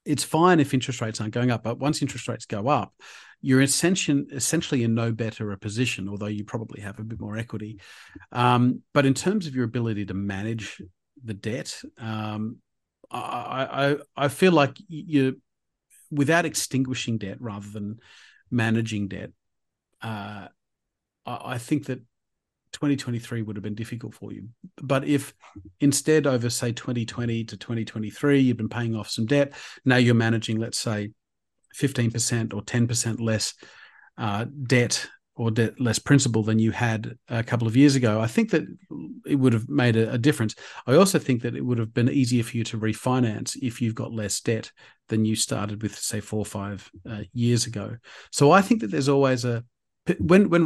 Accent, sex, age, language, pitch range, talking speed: Australian, male, 40-59, English, 110-135 Hz, 180 wpm